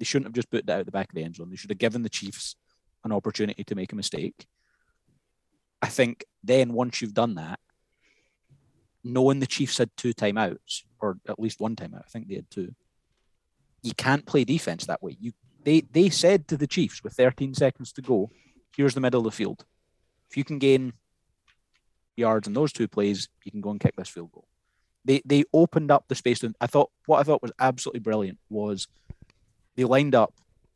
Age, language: 30-49, English